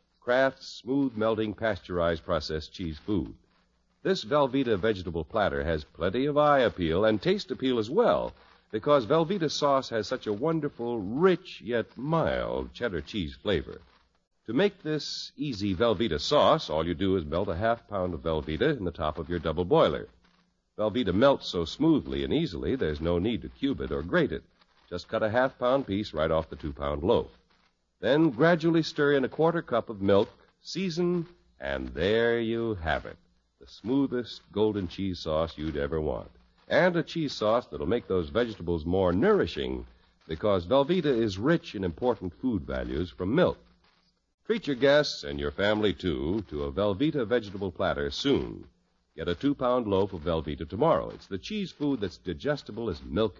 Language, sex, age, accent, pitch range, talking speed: English, male, 60-79, American, 85-140 Hz, 175 wpm